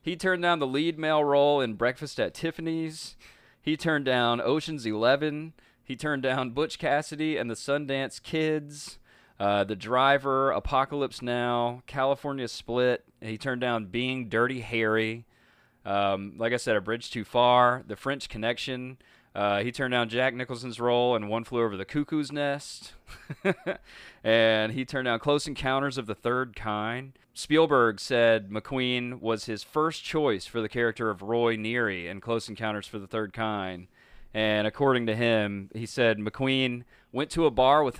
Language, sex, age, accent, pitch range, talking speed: English, male, 30-49, American, 110-135 Hz, 165 wpm